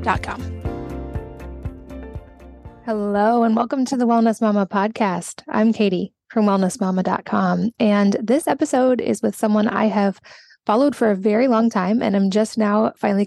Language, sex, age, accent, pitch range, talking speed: English, female, 20-39, American, 195-225 Hz, 140 wpm